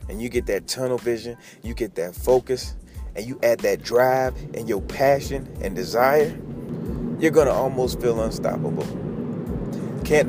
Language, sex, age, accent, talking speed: English, male, 30-49, American, 150 wpm